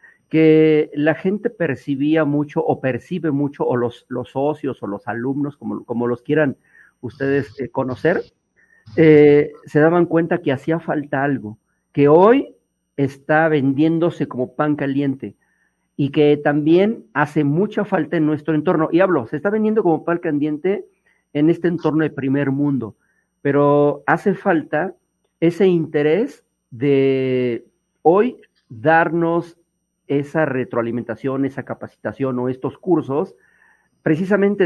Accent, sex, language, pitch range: Mexican, male, English, 135-165 Hz